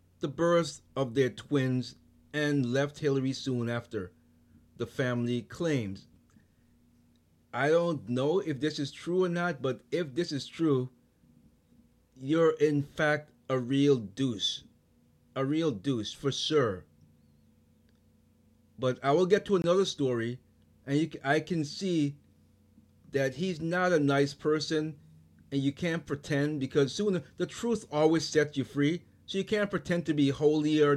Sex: male